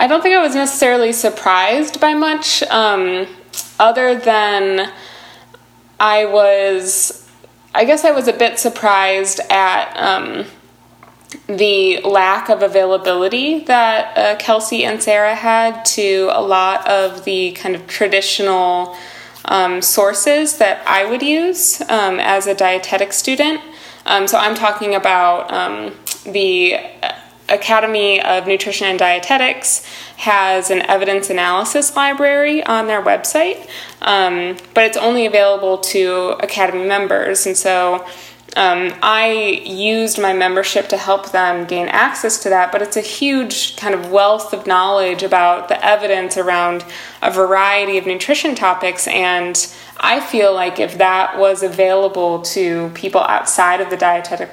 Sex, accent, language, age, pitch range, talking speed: female, American, English, 20-39, 185-225 Hz, 140 wpm